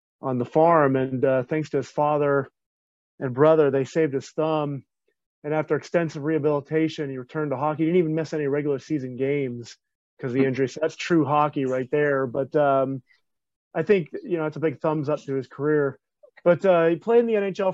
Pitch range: 140-170 Hz